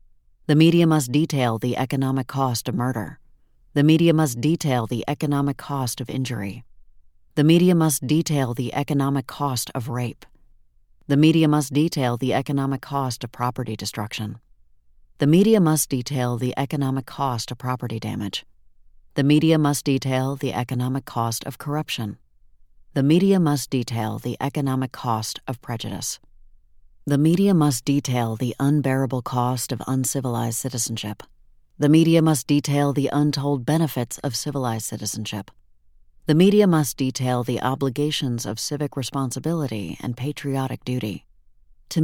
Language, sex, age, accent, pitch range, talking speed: English, female, 40-59, American, 115-145 Hz, 140 wpm